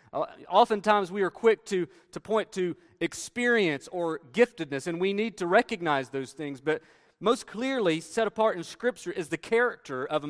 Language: English